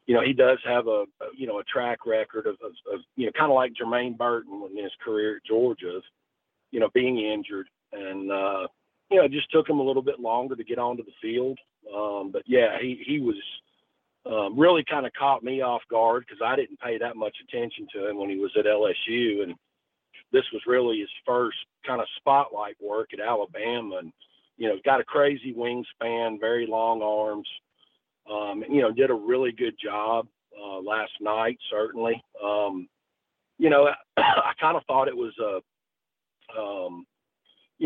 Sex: male